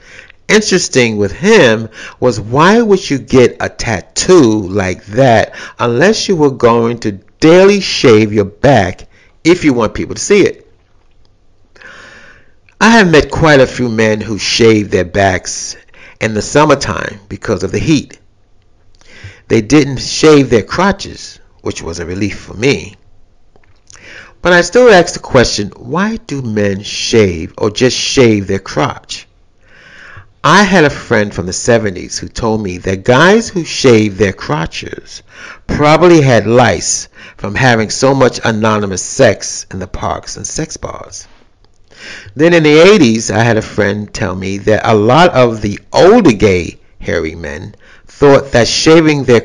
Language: English